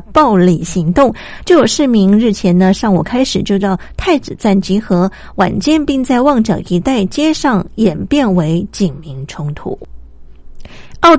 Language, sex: Chinese, female